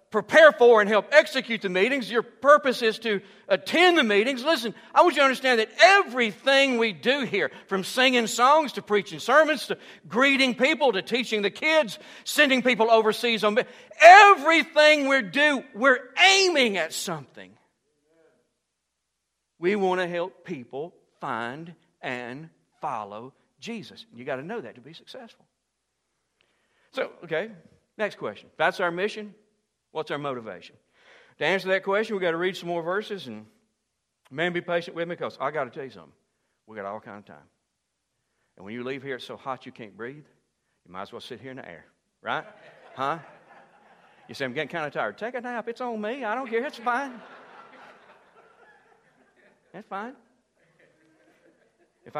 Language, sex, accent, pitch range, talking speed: English, male, American, 170-255 Hz, 170 wpm